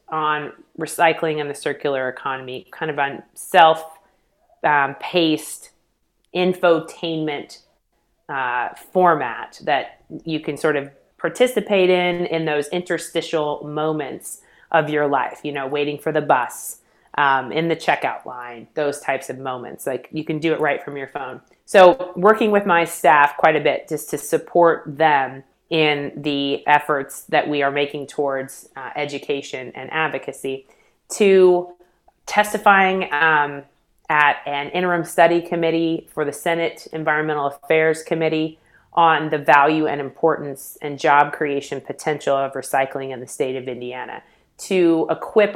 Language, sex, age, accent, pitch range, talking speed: English, female, 30-49, American, 140-165 Hz, 140 wpm